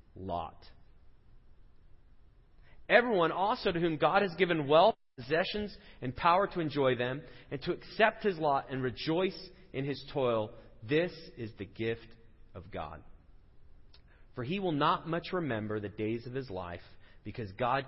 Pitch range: 95-150 Hz